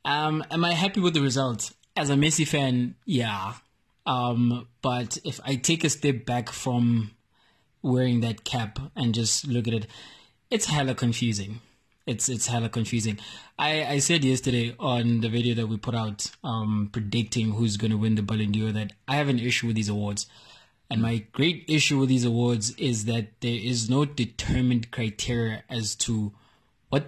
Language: English